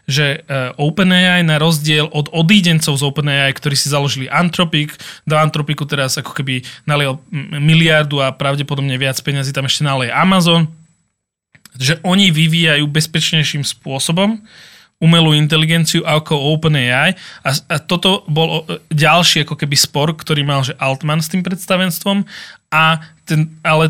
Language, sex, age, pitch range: Czech, male, 20-39, 145-165 Hz